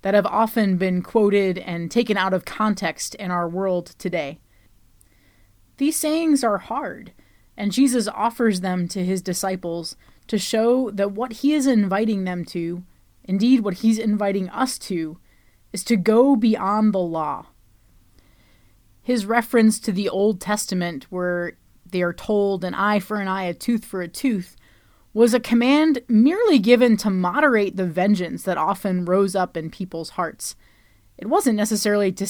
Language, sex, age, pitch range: English, female, 20-39, 175-225 Hz